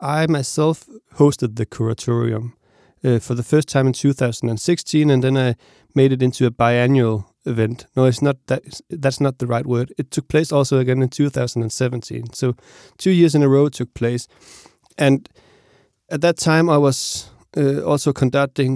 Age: 30-49